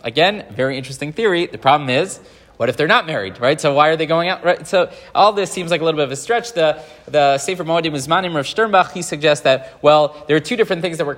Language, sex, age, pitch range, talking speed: English, male, 30-49, 135-165 Hz, 260 wpm